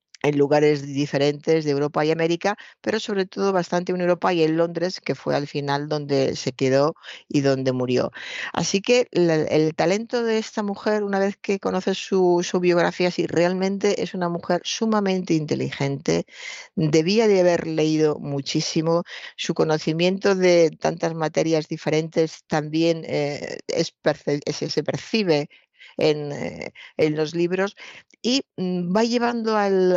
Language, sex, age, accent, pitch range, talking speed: Spanish, female, 50-69, Spanish, 155-195 Hz, 150 wpm